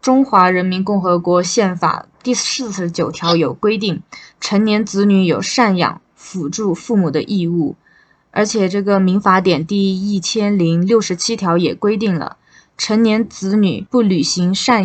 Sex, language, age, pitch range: female, Chinese, 20-39, 170-215 Hz